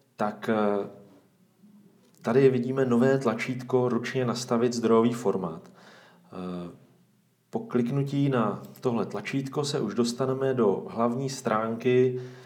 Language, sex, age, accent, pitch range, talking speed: Czech, male, 40-59, native, 115-130 Hz, 95 wpm